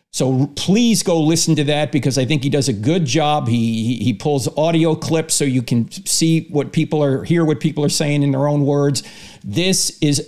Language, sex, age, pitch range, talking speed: English, male, 50-69, 145-190 Hz, 215 wpm